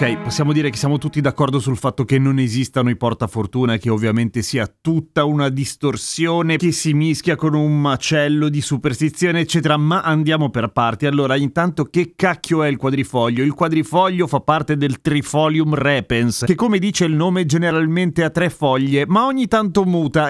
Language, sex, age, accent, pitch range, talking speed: Italian, male, 30-49, native, 130-170 Hz, 175 wpm